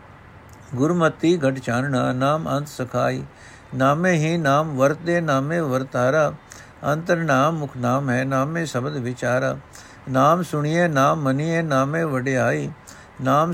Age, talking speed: 60-79, 120 wpm